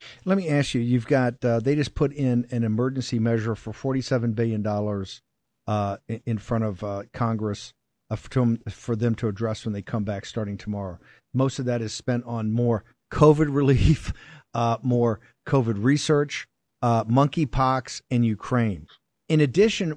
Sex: male